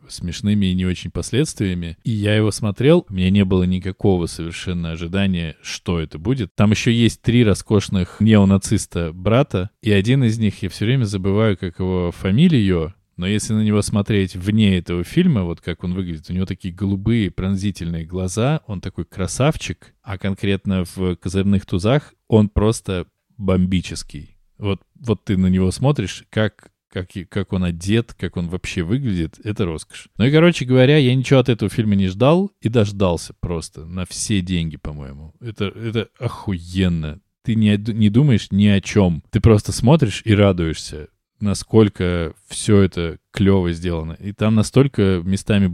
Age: 20-39